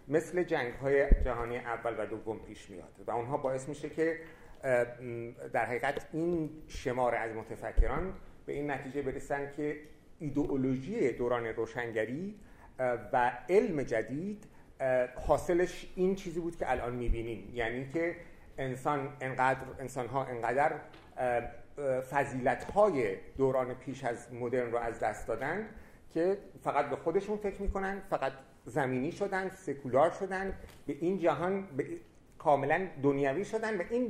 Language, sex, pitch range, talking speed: Persian, male, 120-170 Hz, 125 wpm